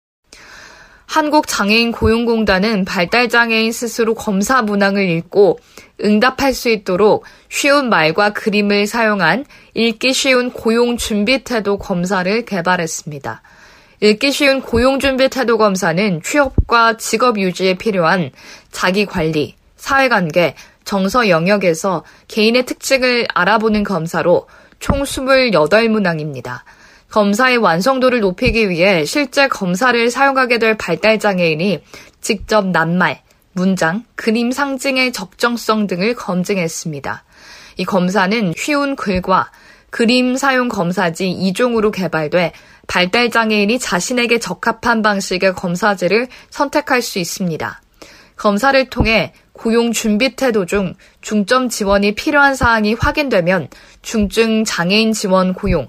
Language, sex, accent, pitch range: Korean, female, native, 185-245 Hz